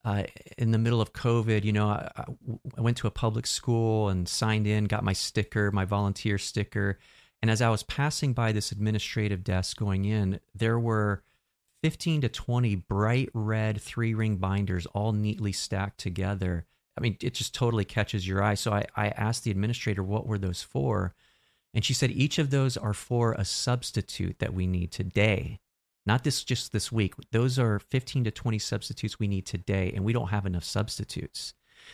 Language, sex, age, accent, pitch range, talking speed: English, male, 40-59, American, 100-120 Hz, 190 wpm